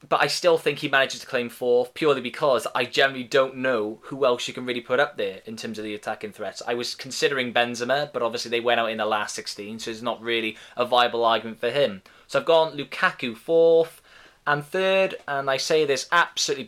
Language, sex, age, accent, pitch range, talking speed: English, male, 20-39, British, 115-140 Hz, 225 wpm